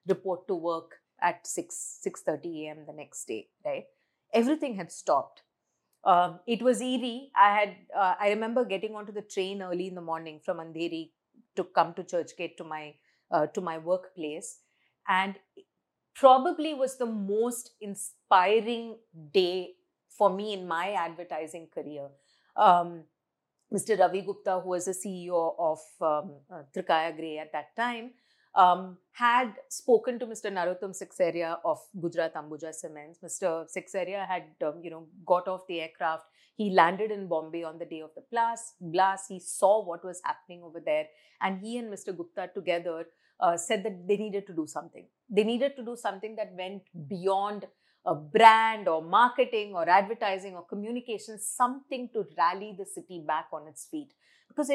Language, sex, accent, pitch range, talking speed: English, female, Indian, 170-220 Hz, 165 wpm